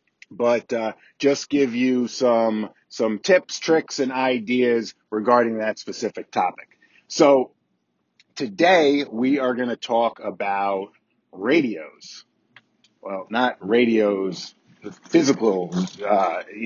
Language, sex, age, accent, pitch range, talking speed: English, male, 40-59, American, 110-140 Hz, 105 wpm